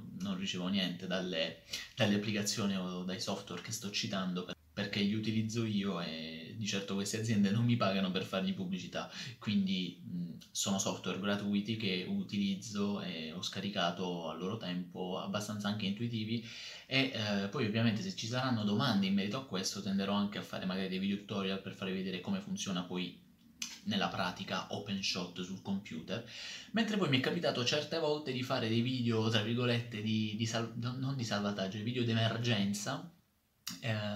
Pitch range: 100-120 Hz